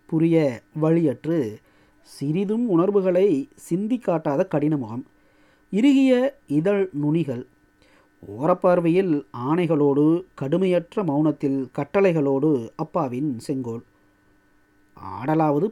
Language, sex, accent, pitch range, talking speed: Tamil, male, native, 125-190 Hz, 75 wpm